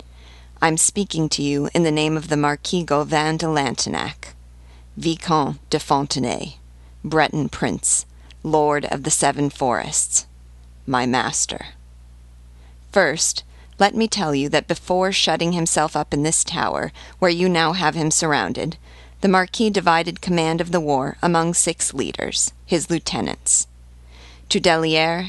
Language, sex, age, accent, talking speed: English, female, 40-59, American, 140 wpm